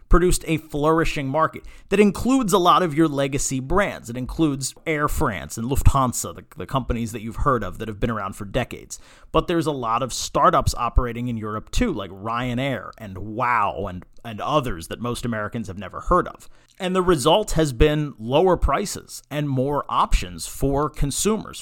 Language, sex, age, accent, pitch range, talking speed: English, male, 40-59, American, 115-155 Hz, 185 wpm